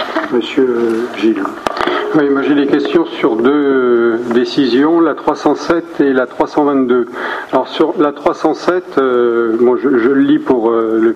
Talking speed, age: 150 wpm, 40-59